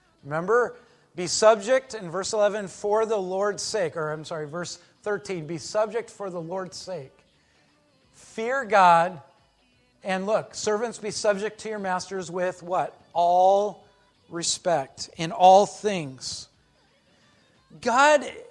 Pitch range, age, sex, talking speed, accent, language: 180-230 Hz, 40-59, male, 125 wpm, American, English